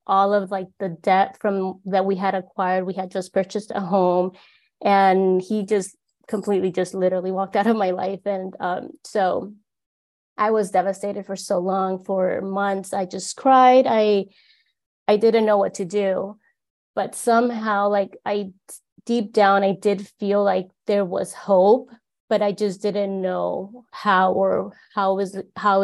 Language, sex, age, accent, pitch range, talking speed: English, female, 20-39, American, 190-210 Hz, 165 wpm